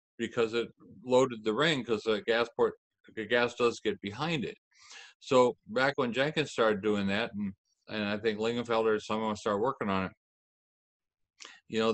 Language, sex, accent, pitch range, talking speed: English, male, American, 100-125 Hz, 175 wpm